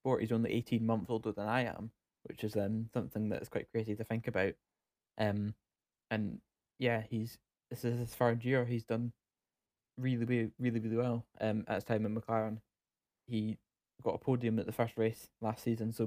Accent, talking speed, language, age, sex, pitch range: British, 185 wpm, English, 10-29, male, 110-120 Hz